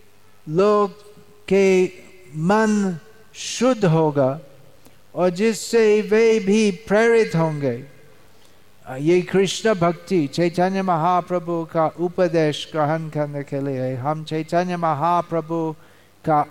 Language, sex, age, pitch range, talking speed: Hindi, male, 50-69, 130-175 Hz, 95 wpm